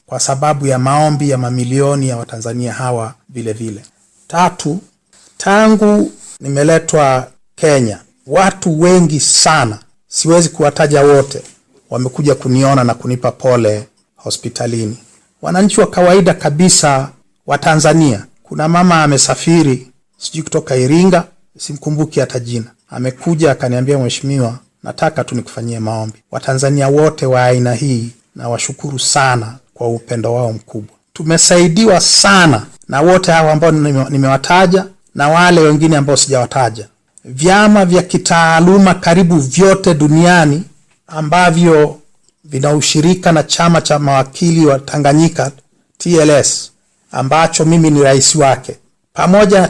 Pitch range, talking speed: 130-170 Hz, 110 wpm